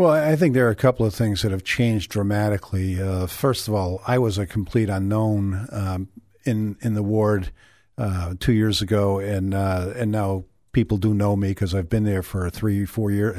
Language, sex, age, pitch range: English, male, 50-69, 95-115 Hz